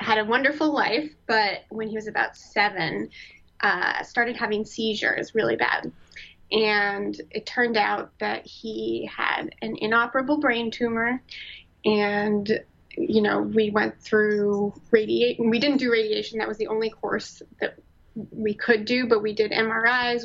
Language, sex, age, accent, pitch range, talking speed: English, female, 20-39, American, 210-230 Hz, 150 wpm